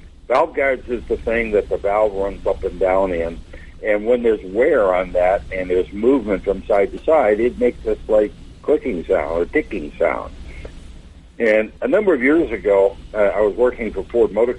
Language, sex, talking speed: English, male, 200 wpm